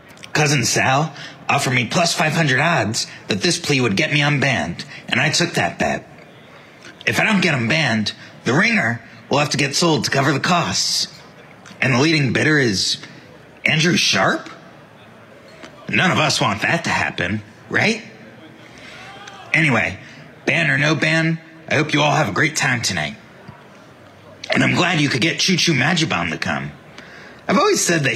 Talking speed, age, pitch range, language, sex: 170 wpm, 30-49, 140-165 Hz, English, male